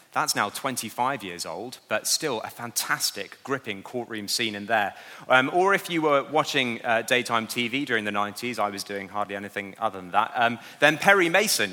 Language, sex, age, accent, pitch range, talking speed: English, male, 30-49, British, 105-150 Hz, 195 wpm